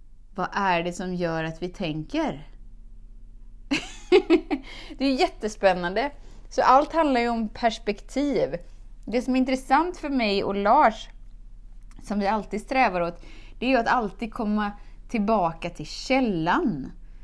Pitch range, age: 185-265 Hz, 20-39